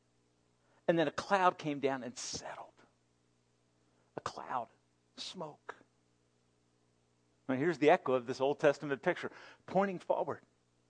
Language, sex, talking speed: English, male, 120 wpm